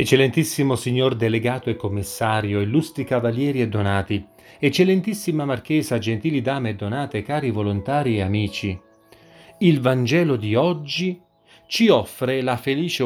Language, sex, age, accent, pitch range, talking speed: Italian, male, 40-59, native, 115-175 Hz, 125 wpm